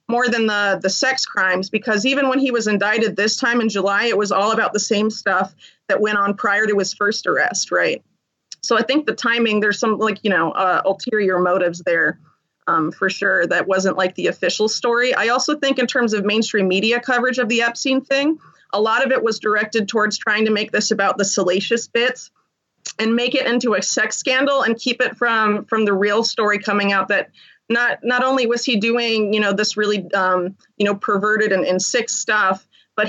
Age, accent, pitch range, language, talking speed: 30-49, American, 200-235 Hz, English, 220 wpm